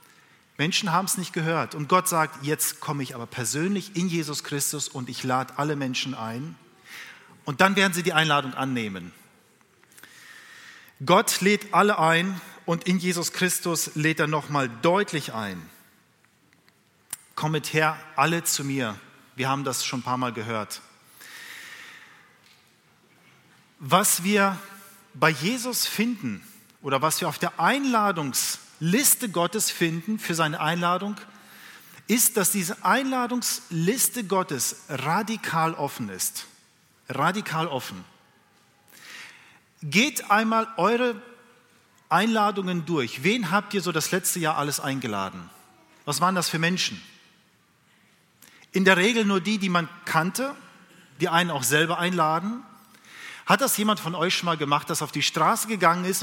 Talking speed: 140 wpm